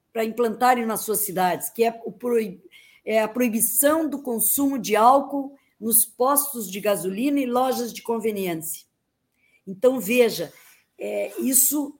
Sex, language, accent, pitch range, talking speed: female, Portuguese, Brazilian, 195-255 Hz, 120 wpm